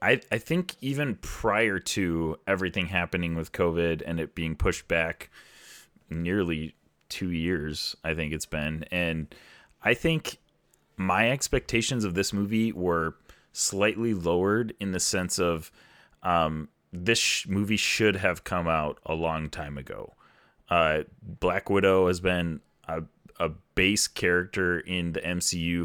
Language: English